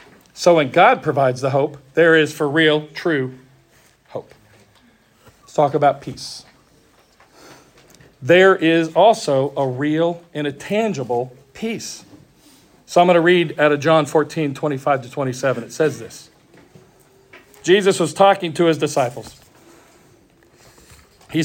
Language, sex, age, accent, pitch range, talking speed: English, male, 40-59, American, 145-180 Hz, 130 wpm